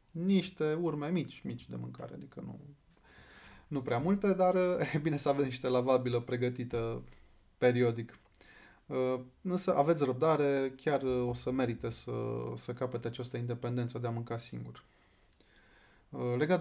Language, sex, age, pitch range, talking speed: Romanian, male, 20-39, 120-140 Hz, 135 wpm